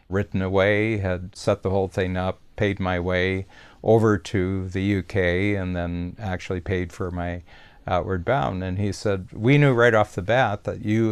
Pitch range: 90-110 Hz